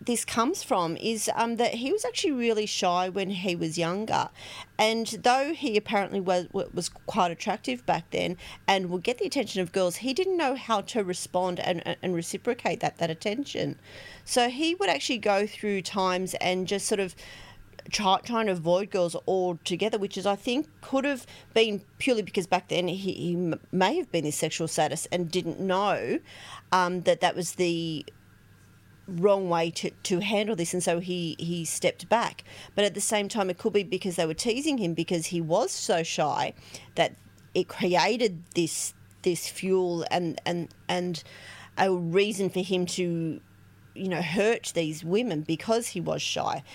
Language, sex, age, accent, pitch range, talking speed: English, female, 40-59, Australian, 170-210 Hz, 180 wpm